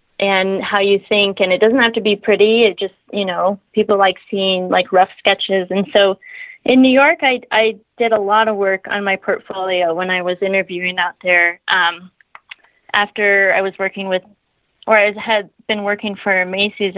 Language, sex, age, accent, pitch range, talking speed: English, female, 20-39, American, 185-220 Hz, 195 wpm